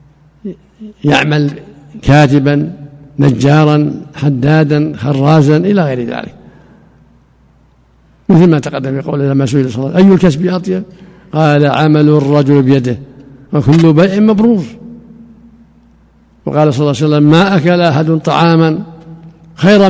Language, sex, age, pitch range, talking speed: Arabic, male, 60-79, 145-180 Hz, 110 wpm